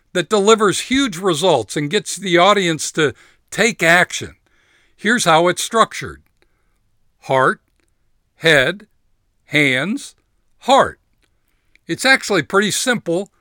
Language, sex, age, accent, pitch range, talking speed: English, male, 60-79, American, 145-200 Hz, 105 wpm